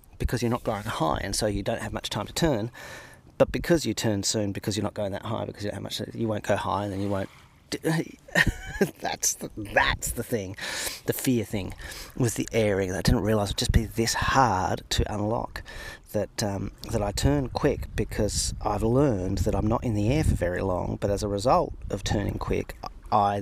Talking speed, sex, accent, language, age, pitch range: 225 wpm, male, Australian, English, 30-49, 100-120 Hz